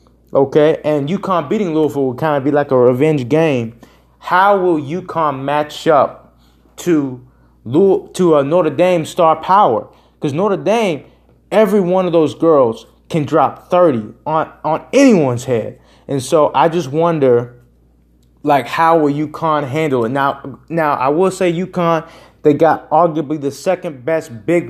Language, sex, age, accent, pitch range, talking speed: English, male, 20-39, American, 140-170 Hz, 160 wpm